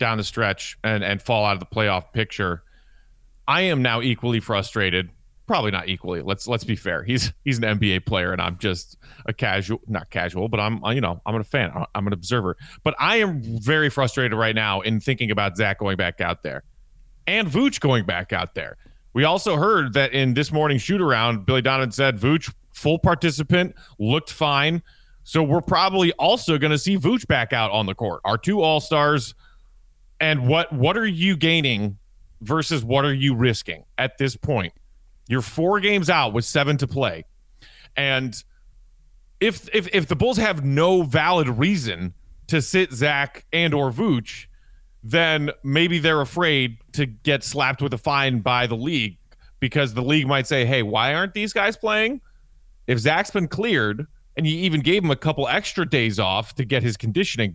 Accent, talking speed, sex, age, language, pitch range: American, 185 wpm, male, 30-49, English, 105-155 Hz